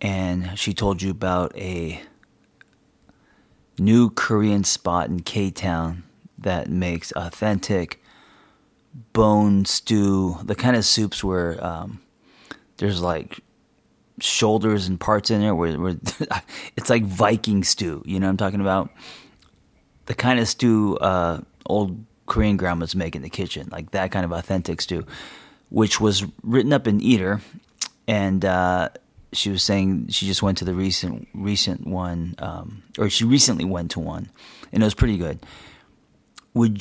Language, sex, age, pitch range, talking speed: English, male, 30-49, 90-110 Hz, 145 wpm